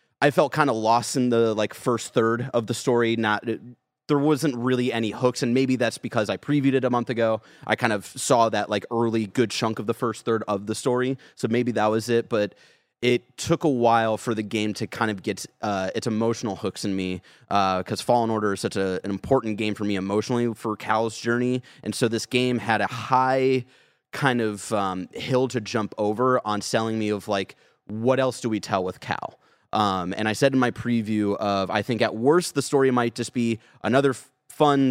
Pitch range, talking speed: 105-125 Hz, 225 wpm